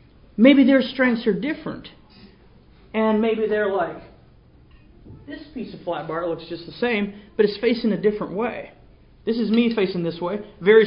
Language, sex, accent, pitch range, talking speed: English, male, American, 190-235 Hz, 170 wpm